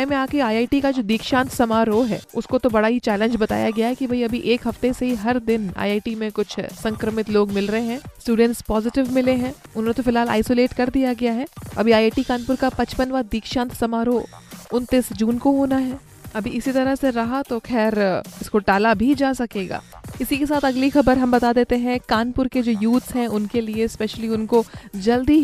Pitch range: 225-255 Hz